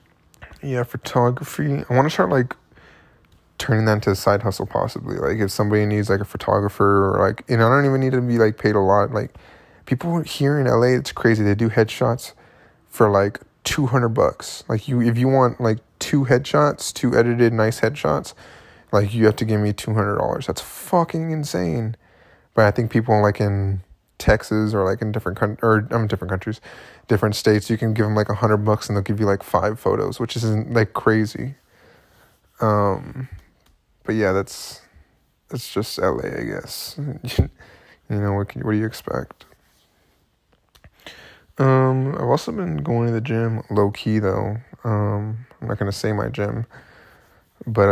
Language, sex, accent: English, male, American